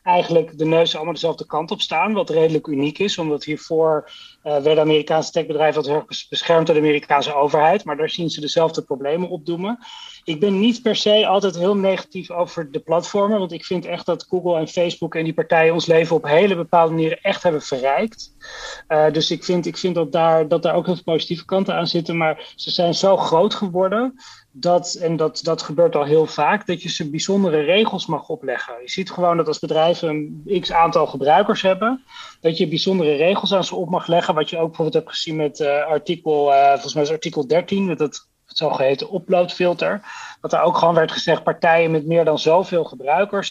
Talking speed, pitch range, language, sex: 205 wpm, 155-180 Hz, Dutch, male